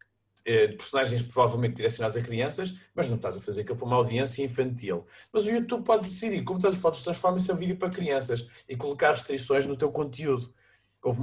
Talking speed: 205 wpm